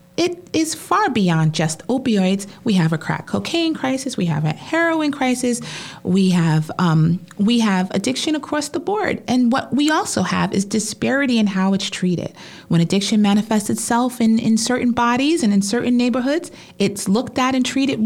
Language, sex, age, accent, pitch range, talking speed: English, female, 30-49, American, 180-255 Hz, 180 wpm